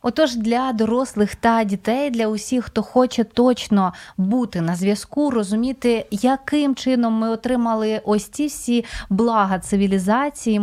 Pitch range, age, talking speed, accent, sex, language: 200-250 Hz, 20-39, 130 wpm, native, female, Ukrainian